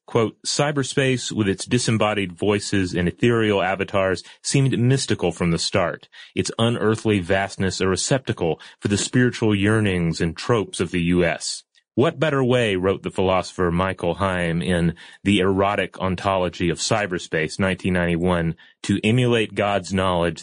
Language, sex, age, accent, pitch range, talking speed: English, male, 30-49, American, 90-110 Hz, 140 wpm